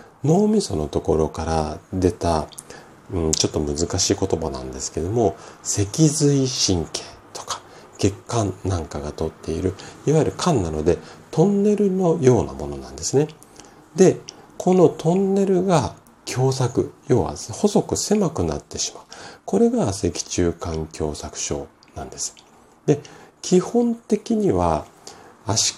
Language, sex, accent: Japanese, male, native